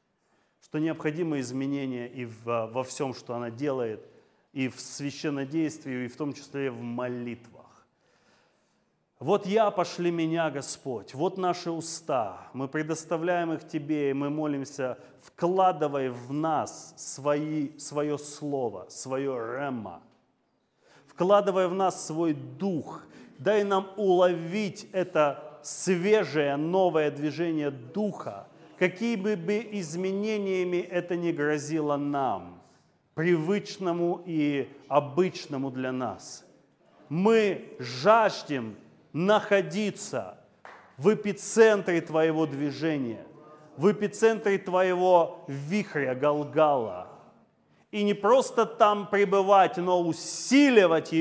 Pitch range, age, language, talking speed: 145-190 Hz, 30-49, Russian, 100 wpm